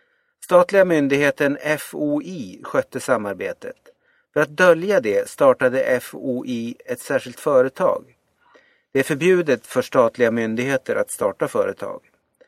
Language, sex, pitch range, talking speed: Swedish, male, 125-200 Hz, 110 wpm